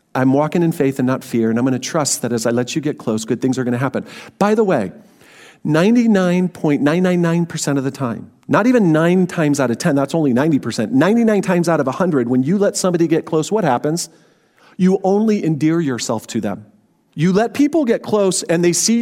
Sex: male